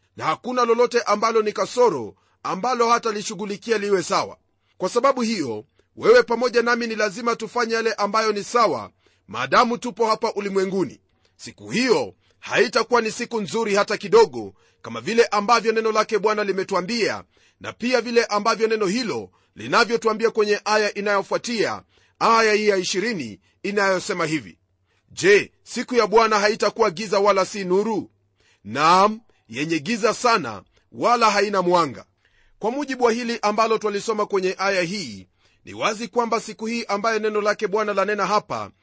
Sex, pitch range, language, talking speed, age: male, 195-230 Hz, Swahili, 145 wpm, 40-59